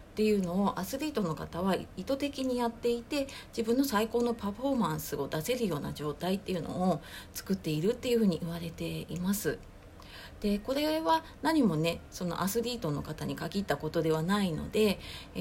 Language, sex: Japanese, female